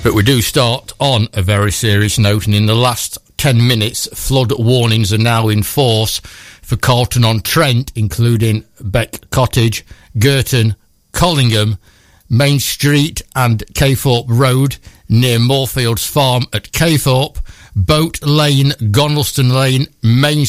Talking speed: 125 wpm